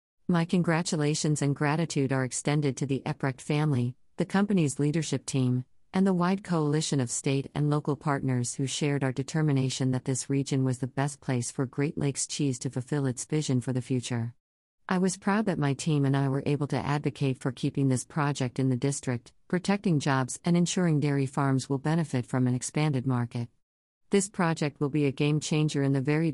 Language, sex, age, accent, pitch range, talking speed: English, female, 50-69, American, 130-160 Hz, 195 wpm